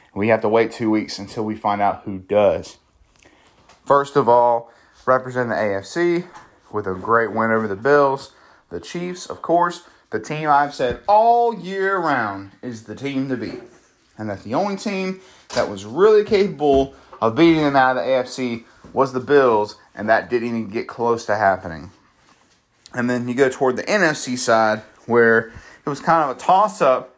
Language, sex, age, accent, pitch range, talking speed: English, male, 30-49, American, 110-145 Hz, 185 wpm